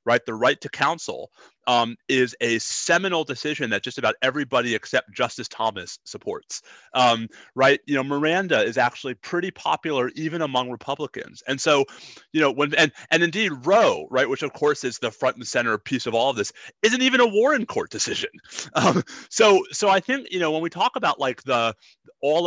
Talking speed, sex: 195 wpm, male